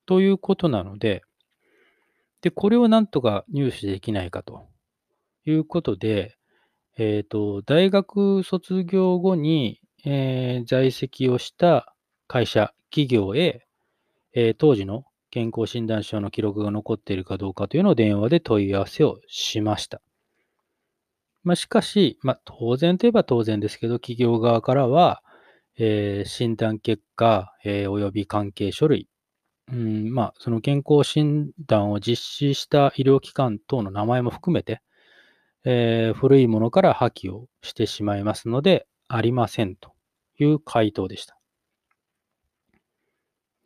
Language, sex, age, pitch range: Japanese, male, 20-39, 105-150 Hz